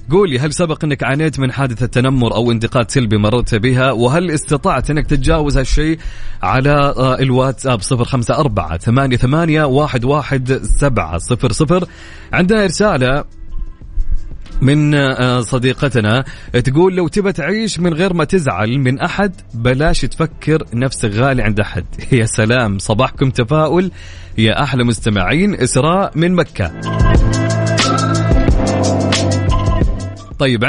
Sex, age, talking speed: male, 30-49, 105 wpm